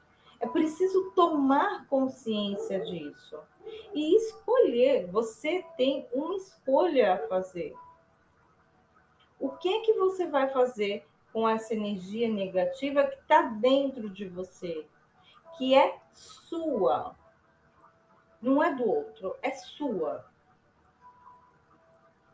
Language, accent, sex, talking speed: Portuguese, Brazilian, female, 105 wpm